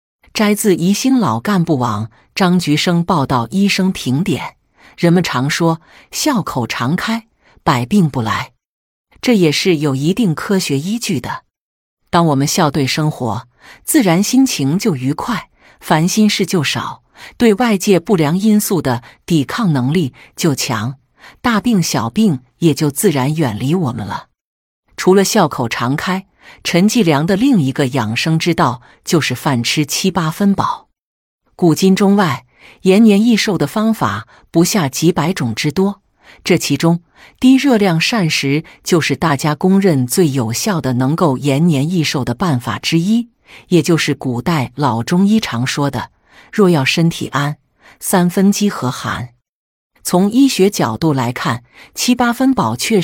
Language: Chinese